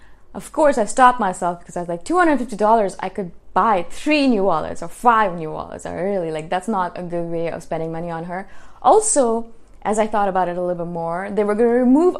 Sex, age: female, 20-39